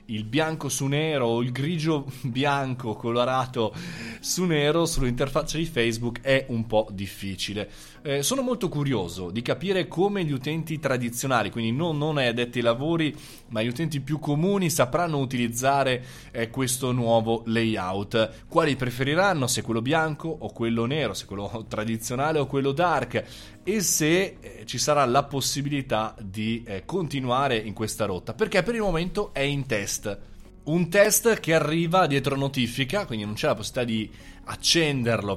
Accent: native